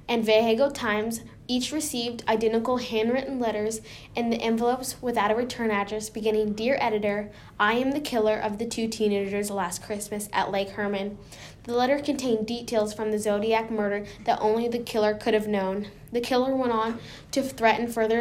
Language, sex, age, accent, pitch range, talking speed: English, female, 10-29, American, 215-240 Hz, 175 wpm